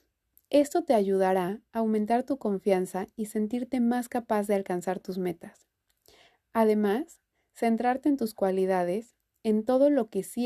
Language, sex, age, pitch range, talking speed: Spanish, female, 30-49, 195-245 Hz, 145 wpm